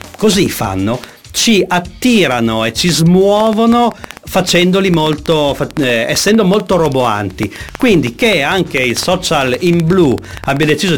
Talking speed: 120 wpm